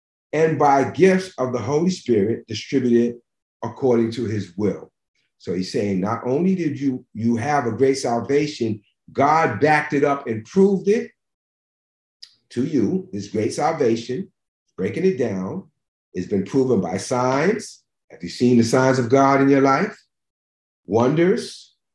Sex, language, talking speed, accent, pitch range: male, English, 150 wpm, American, 115-160 Hz